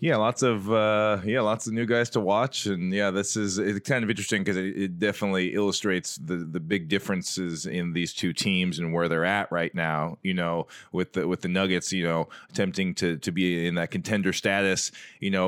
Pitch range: 90-100 Hz